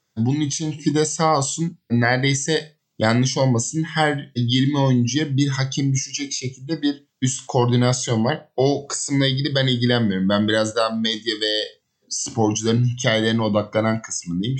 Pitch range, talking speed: 110-140 Hz, 135 wpm